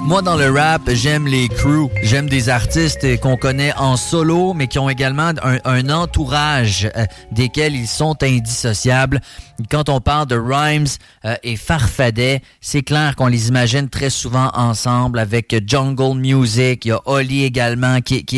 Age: 30-49